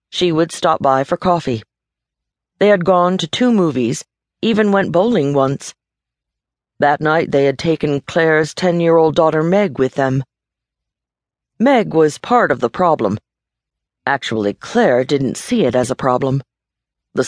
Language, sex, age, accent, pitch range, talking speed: English, female, 50-69, American, 130-170 Hz, 145 wpm